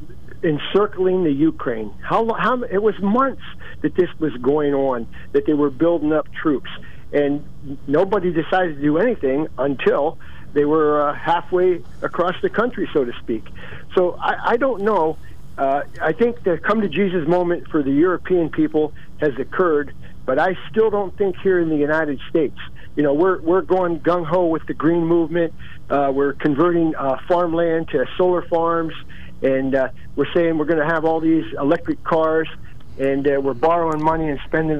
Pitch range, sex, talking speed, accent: 140-175 Hz, male, 175 wpm, American